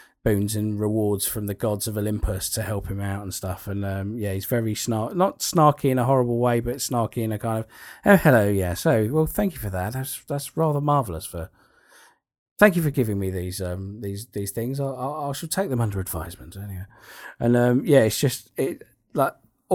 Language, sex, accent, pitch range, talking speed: English, male, British, 95-120 Hz, 220 wpm